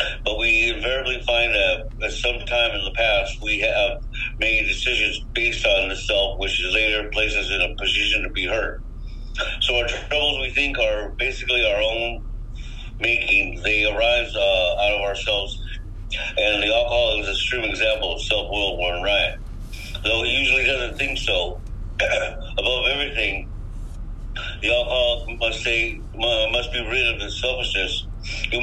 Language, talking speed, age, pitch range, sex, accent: English, 160 wpm, 50-69, 100-120 Hz, male, American